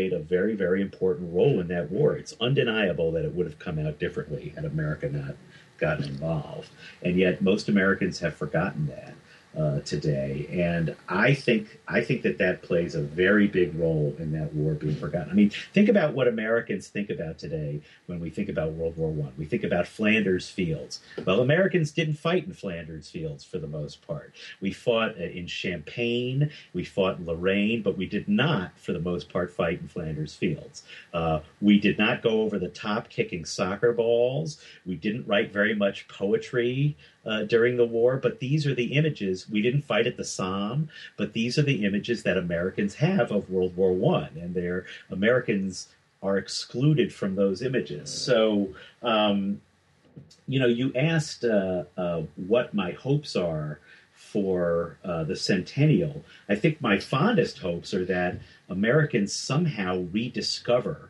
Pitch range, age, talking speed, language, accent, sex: 90-145 Hz, 50-69, 175 wpm, English, American, male